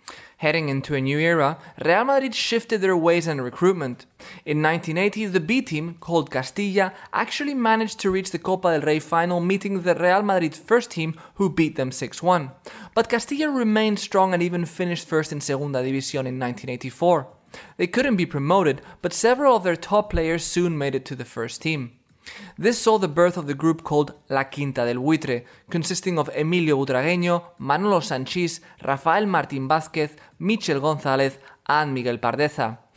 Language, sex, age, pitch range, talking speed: English, male, 20-39, 145-190 Hz, 170 wpm